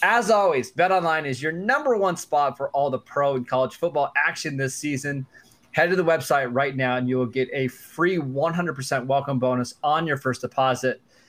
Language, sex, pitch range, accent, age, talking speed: English, male, 125-155 Hz, American, 20-39, 195 wpm